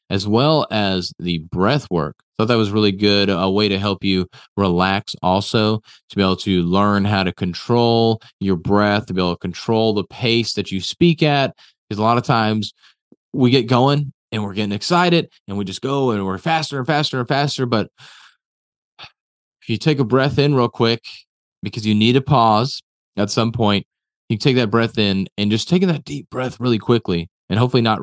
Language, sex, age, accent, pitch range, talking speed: English, male, 30-49, American, 100-120 Hz, 205 wpm